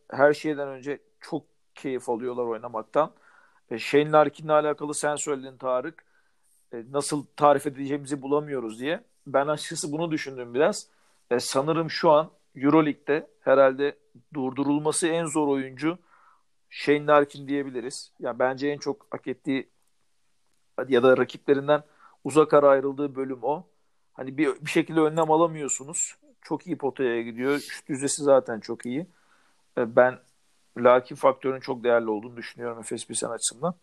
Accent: native